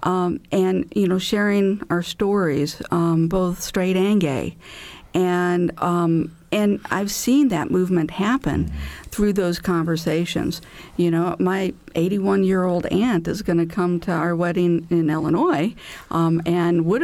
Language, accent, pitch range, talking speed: English, American, 175-240 Hz, 150 wpm